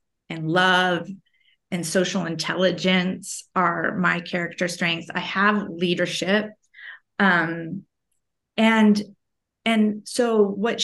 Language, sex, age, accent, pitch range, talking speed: English, female, 30-49, American, 175-200 Hz, 95 wpm